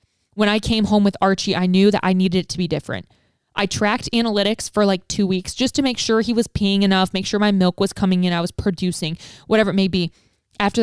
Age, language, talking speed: 20-39, English, 250 wpm